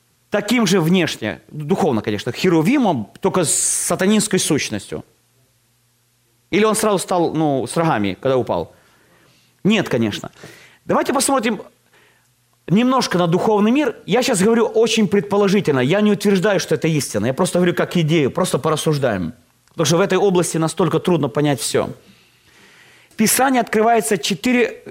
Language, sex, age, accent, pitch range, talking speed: Russian, male, 30-49, native, 145-215 Hz, 135 wpm